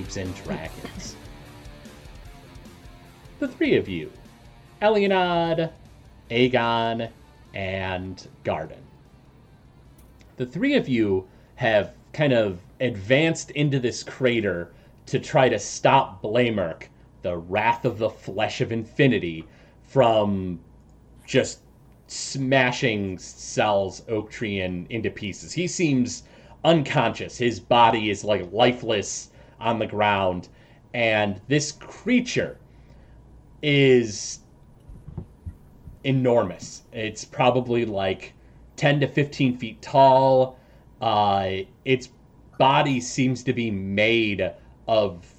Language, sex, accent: English, male, American